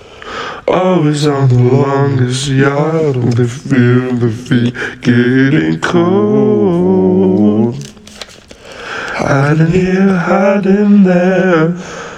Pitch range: 130-185 Hz